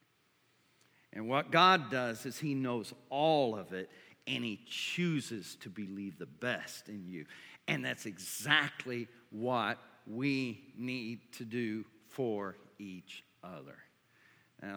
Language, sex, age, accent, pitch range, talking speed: English, male, 50-69, American, 120-150 Hz, 125 wpm